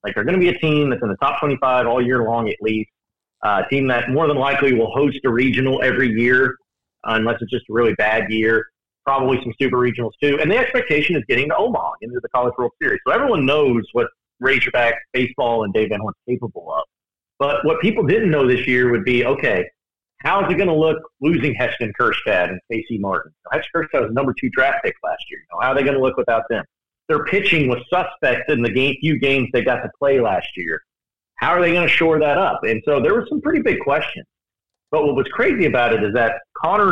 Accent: American